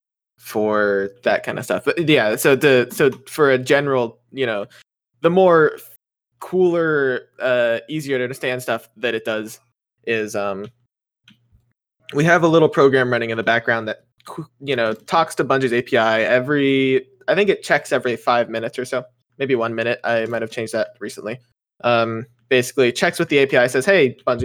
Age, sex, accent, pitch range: 20-39, male, American, 115-135 Hz